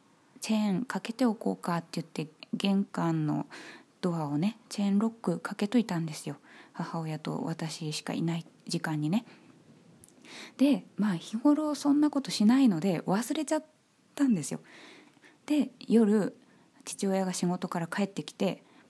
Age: 20-39